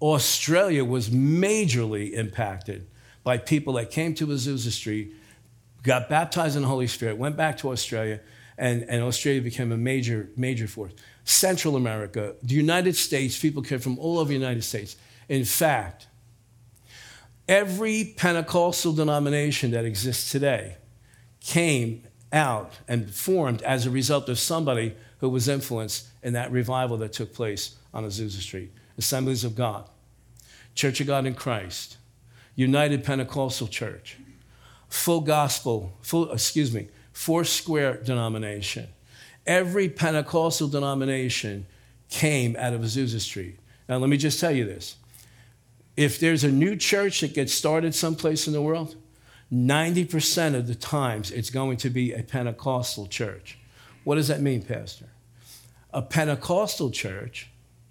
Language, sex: English, male